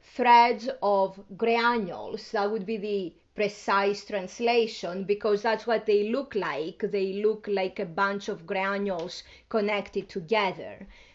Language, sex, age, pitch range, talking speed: English, female, 30-49, 200-250 Hz, 130 wpm